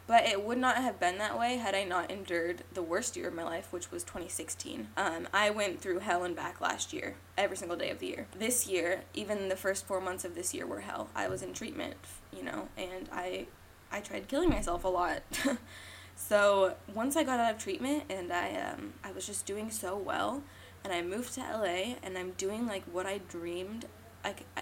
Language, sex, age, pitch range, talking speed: English, female, 10-29, 180-235 Hz, 220 wpm